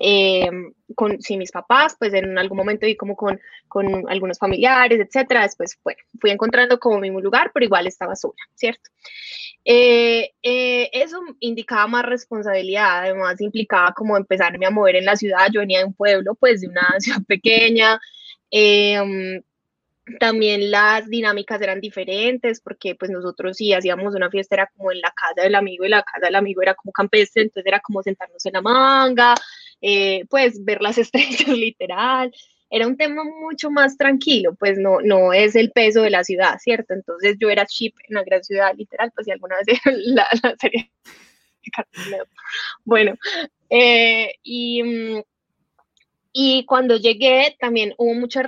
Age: 10-29